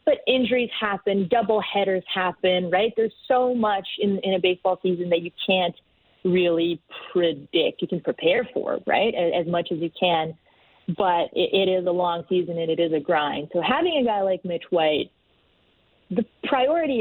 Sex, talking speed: female, 185 wpm